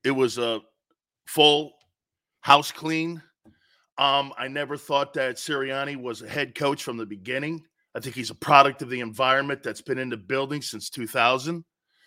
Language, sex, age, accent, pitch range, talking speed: English, male, 40-59, American, 140-180 Hz, 170 wpm